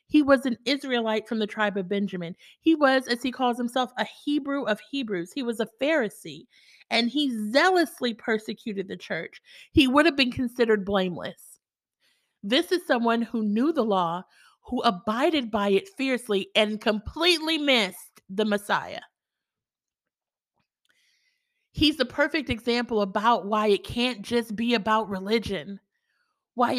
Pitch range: 210-280 Hz